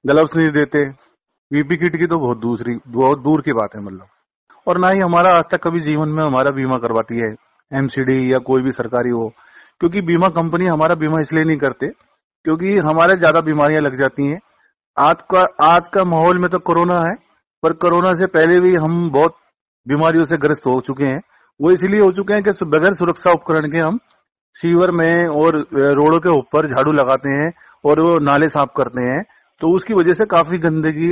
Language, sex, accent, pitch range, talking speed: Hindi, male, native, 140-175 Hz, 195 wpm